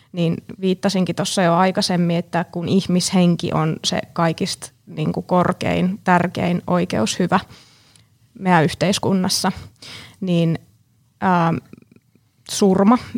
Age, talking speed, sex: 20-39, 95 wpm, female